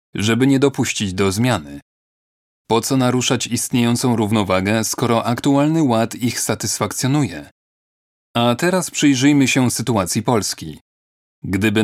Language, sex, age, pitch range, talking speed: Polish, male, 30-49, 105-130 Hz, 110 wpm